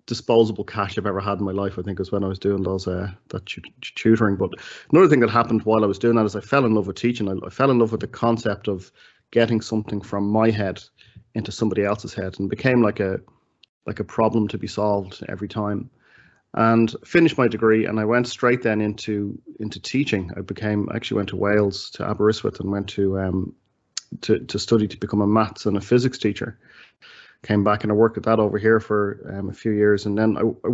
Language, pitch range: English, 100-115 Hz